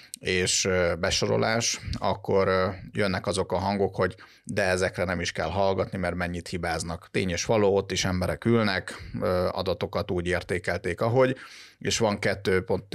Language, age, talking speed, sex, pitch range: Hungarian, 30-49, 150 wpm, male, 90-100 Hz